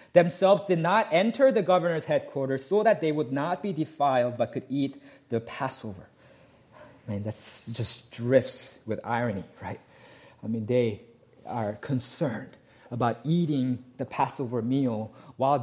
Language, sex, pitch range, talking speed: English, male, 120-145 Hz, 145 wpm